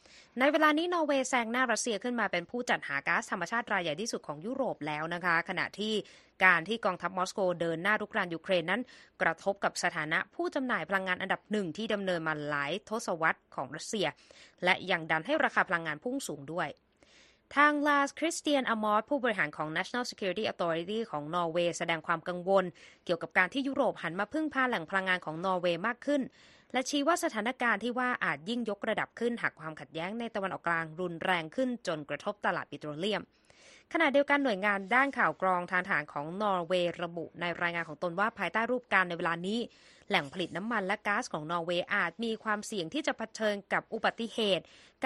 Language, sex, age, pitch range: Thai, female, 20-39, 175-235 Hz